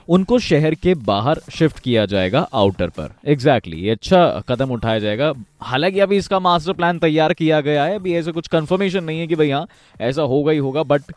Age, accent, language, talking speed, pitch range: 20-39, native, Hindi, 210 wpm, 115-165 Hz